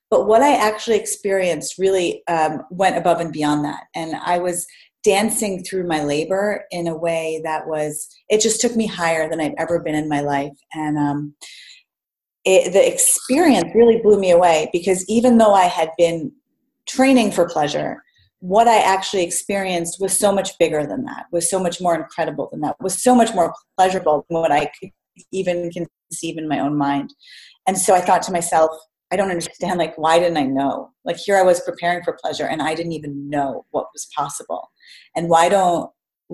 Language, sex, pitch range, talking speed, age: English, female, 165-200 Hz, 195 wpm, 30-49